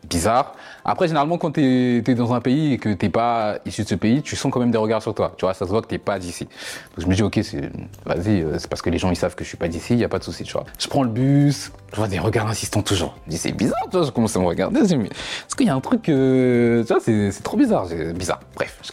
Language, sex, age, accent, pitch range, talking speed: French, male, 30-49, French, 95-135 Hz, 315 wpm